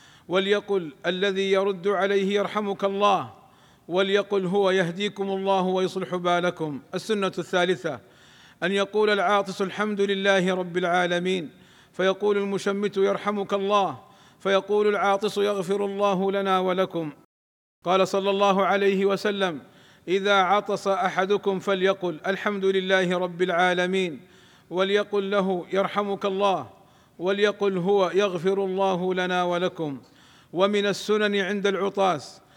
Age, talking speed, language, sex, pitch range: 50-69, 105 wpm, Arabic, male, 180-200 Hz